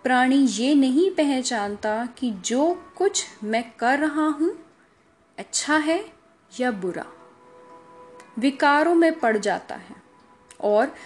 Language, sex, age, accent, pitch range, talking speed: Hindi, female, 10-29, native, 220-305 Hz, 115 wpm